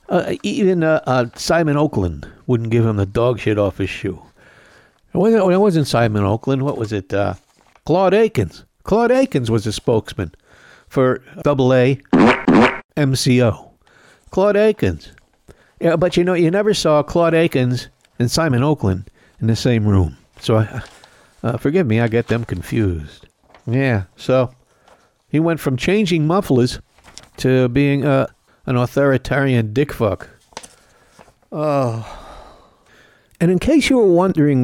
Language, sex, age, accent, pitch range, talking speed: English, male, 60-79, American, 115-170 Hz, 140 wpm